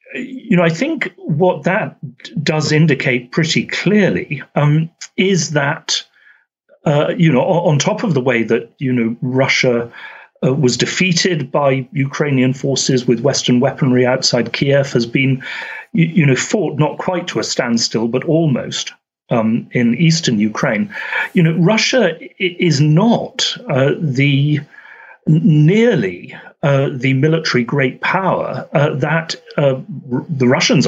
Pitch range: 130-175 Hz